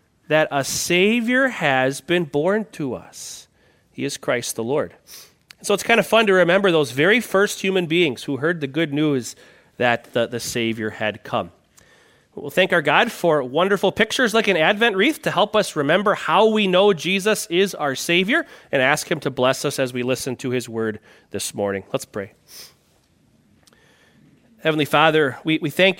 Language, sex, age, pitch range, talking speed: English, male, 30-49, 145-200 Hz, 180 wpm